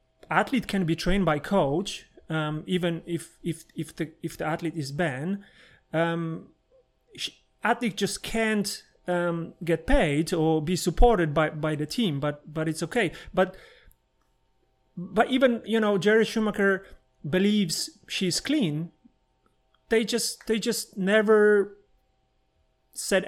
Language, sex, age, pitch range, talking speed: English, male, 30-49, 170-210 Hz, 130 wpm